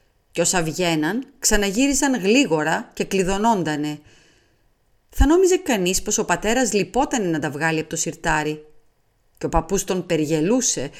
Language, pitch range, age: Greek, 160-230 Hz, 30-49